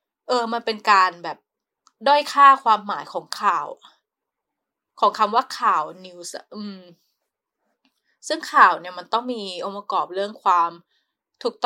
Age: 20-39